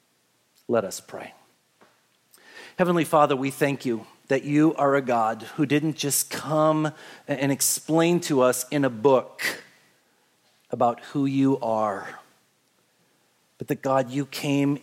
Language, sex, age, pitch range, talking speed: English, male, 40-59, 120-165 Hz, 135 wpm